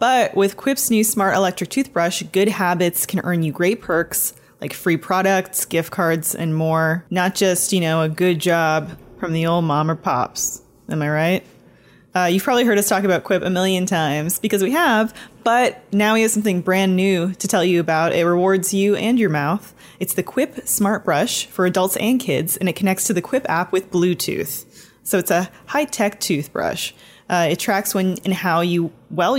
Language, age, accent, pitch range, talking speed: English, 20-39, American, 165-200 Hz, 200 wpm